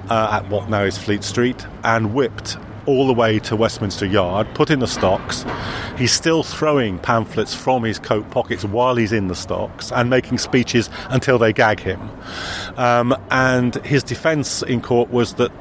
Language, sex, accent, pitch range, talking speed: English, male, British, 100-125 Hz, 180 wpm